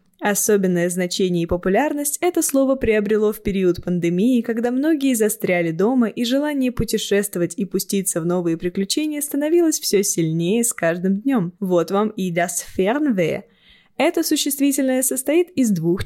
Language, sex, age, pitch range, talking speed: Russian, female, 10-29, 185-270 Hz, 140 wpm